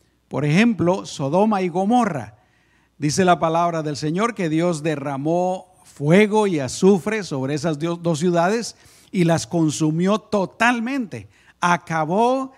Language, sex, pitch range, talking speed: Spanish, male, 155-220 Hz, 120 wpm